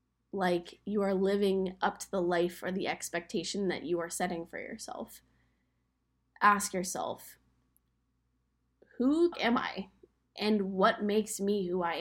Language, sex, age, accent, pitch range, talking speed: English, female, 10-29, American, 185-235 Hz, 140 wpm